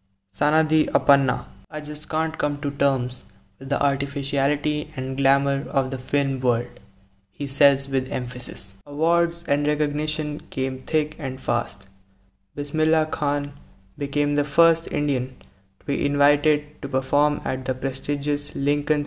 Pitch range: 130-150 Hz